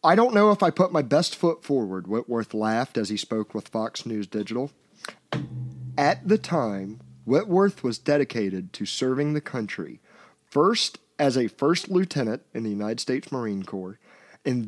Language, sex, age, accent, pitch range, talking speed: English, male, 40-59, American, 110-155 Hz, 170 wpm